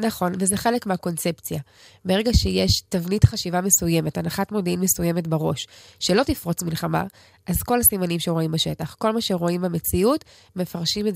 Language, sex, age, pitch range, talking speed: Hebrew, female, 20-39, 165-205 Hz, 145 wpm